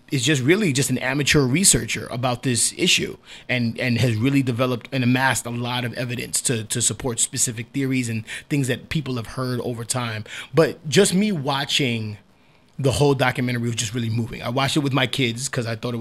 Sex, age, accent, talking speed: male, 30-49, American, 205 wpm